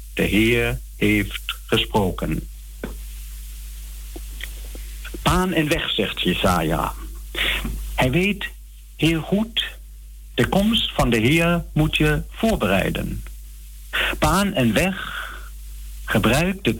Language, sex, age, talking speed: Dutch, male, 60-79, 95 wpm